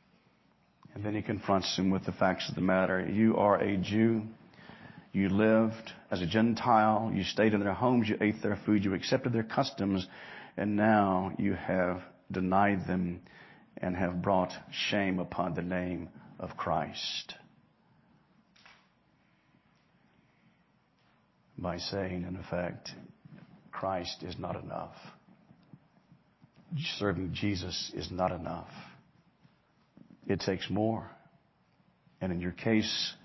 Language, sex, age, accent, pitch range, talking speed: English, male, 50-69, American, 90-110 Hz, 125 wpm